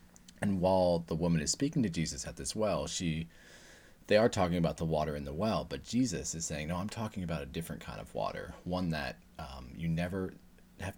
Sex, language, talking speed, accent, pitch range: male, English, 220 wpm, American, 80-100 Hz